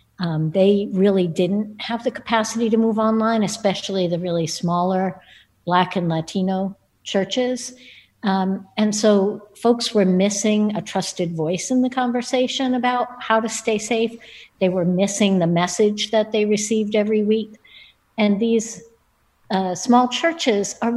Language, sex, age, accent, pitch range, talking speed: English, female, 60-79, American, 180-220 Hz, 145 wpm